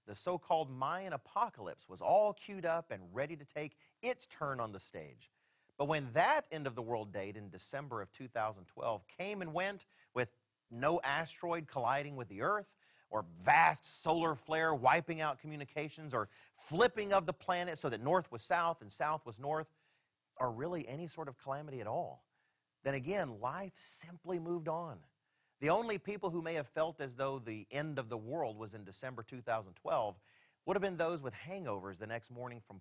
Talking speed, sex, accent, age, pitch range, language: 180 wpm, male, American, 40-59, 130-185 Hz, English